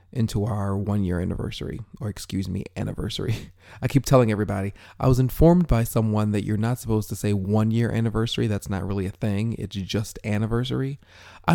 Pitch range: 95-120 Hz